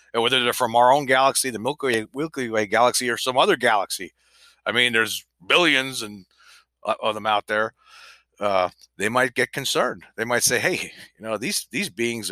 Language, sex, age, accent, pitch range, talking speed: English, male, 30-49, American, 115-155 Hz, 200 wpm